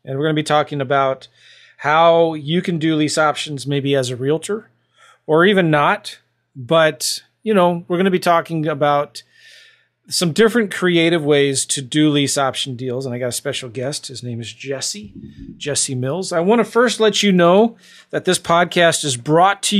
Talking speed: 190 wpm